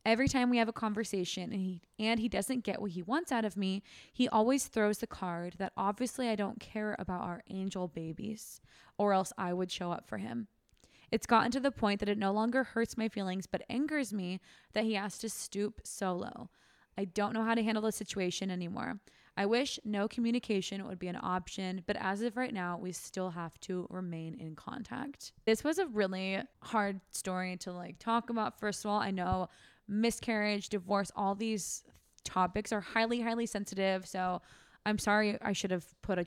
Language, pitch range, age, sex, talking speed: English, 185-225 Hz, 20-39, female, 200 wpm